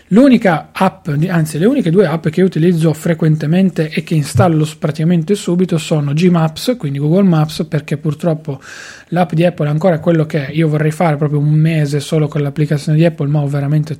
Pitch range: 150-170 Hz